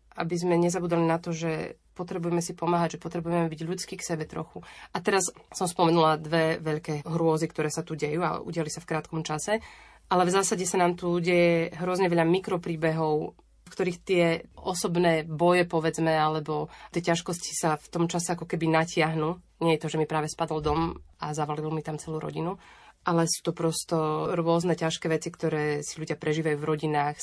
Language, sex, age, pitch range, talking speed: Slovak, female, 20-39, 160-180 Hz, 190 wpm